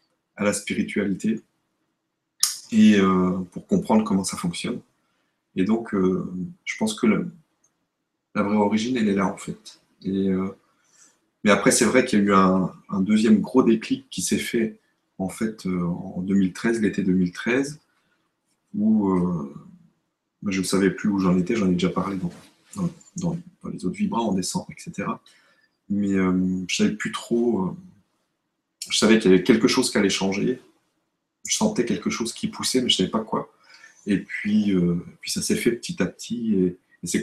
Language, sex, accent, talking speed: French, male, French, 180 wpm